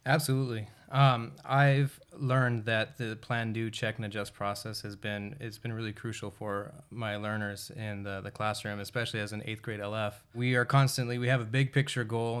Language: English